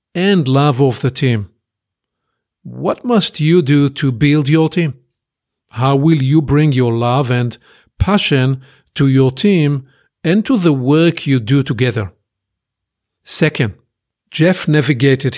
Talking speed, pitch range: 135 wpm, 135-165 Hz